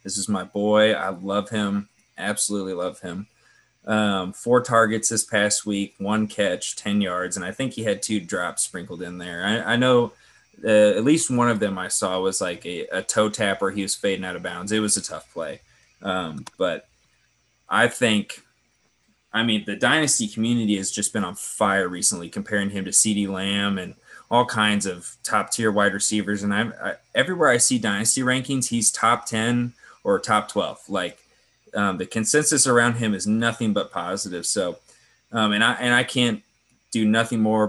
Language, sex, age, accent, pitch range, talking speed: English, male, 20-39, American, 100-115 Hz, 195 wpm